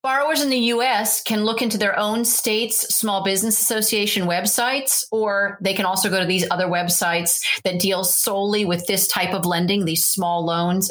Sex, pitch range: female, 180-220 Hz